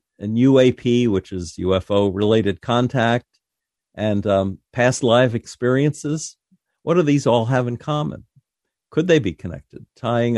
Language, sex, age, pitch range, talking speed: English, male, 50-69, 100-125 Hz, 135 wpm